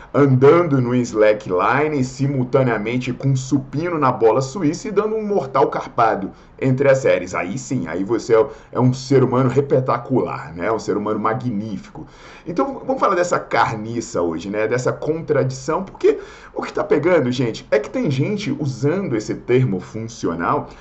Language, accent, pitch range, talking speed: Portuguese, Brazilian, 125-205 Hz, 160 wpm